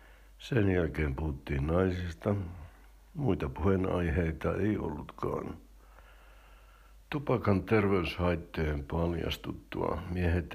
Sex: male